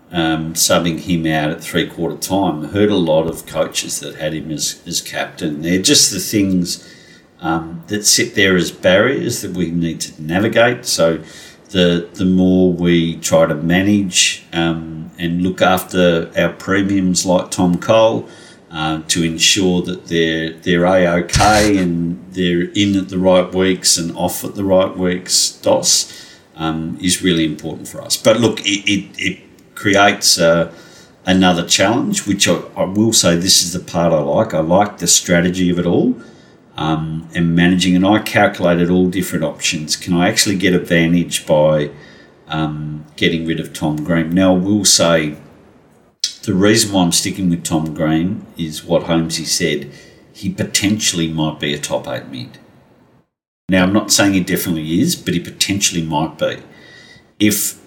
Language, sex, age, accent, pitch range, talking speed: English, male, 50-69, Australian, 80-95 Hz, 170 wpm